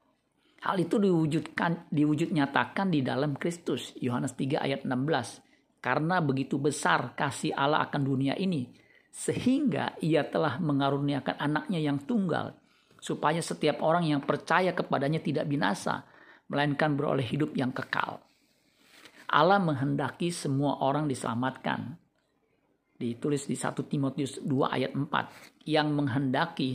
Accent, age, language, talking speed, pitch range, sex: native, 50-69, Indonesian, 120 wpm, 135-160 Hz, male